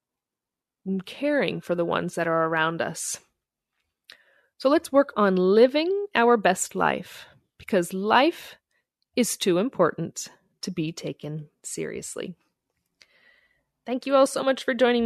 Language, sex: English, female